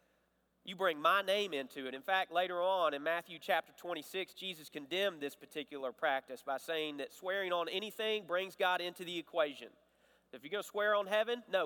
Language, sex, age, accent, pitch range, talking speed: English, male, 40-59, American, 155-215 Hz, 195 wpm